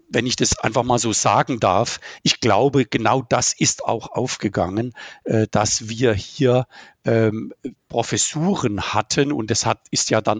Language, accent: German, German